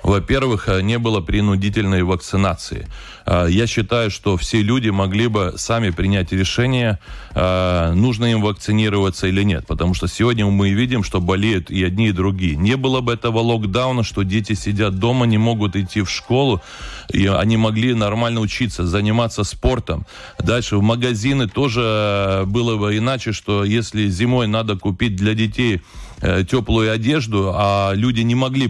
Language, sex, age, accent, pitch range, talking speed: Russian, male, 30-49, native, 100-120 Hz, 150 wpm